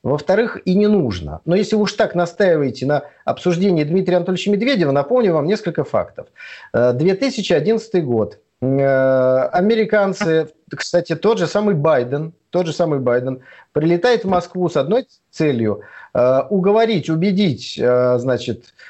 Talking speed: 125 wpm